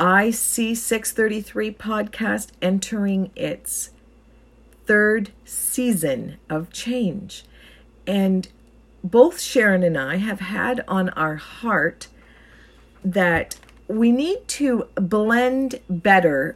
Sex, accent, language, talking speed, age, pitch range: female, American, English, 95 wpm, 50-69, 180-245 Hz